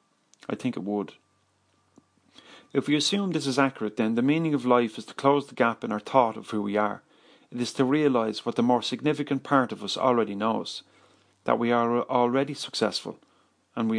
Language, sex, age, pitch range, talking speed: English, male, 40-59, 105-125 Hz, 200 wpm